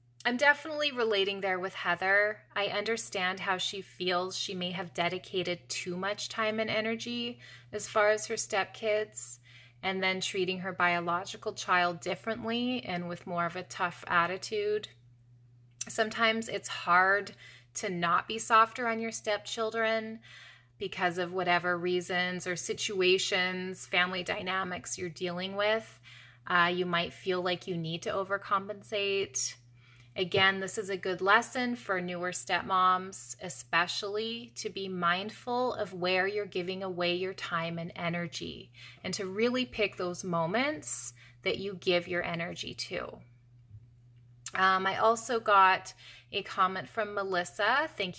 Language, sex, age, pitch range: English, female, 20-39, 175-205 Hz